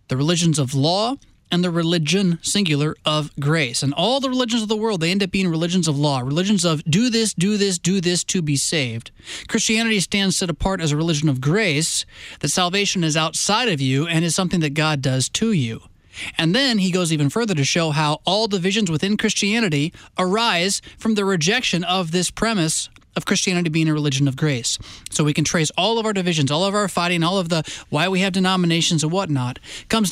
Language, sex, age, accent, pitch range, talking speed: English, male, 20-39, American, 150-195 Hz, 215 wpm